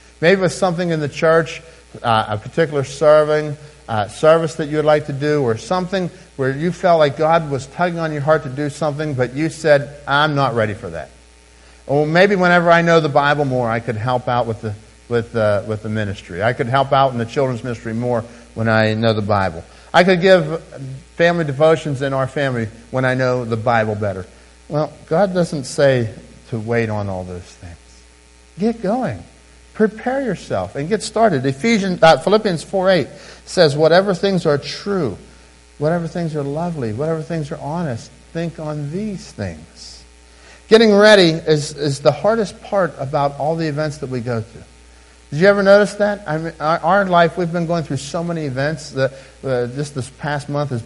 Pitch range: 115-165 Hz